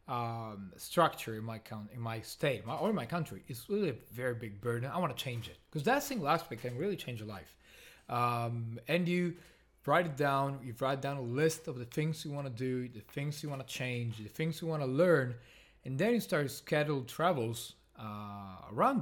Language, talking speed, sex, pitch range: English, 225 wpm, male, 115-165 Hz